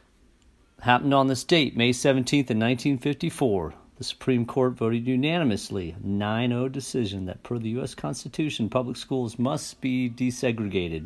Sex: male